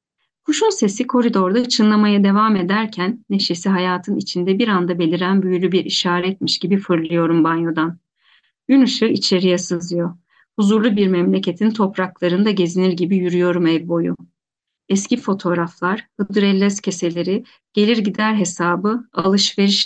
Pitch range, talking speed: 175-210 Hz, 120 wpm